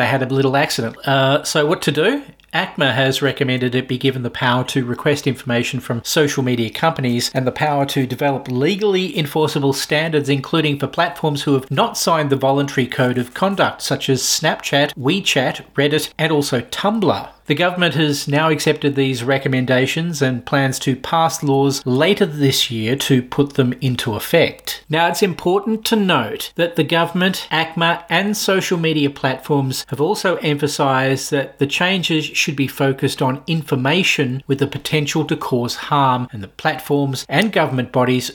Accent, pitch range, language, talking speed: Australian, 130-160 Hz, English, 175 wpm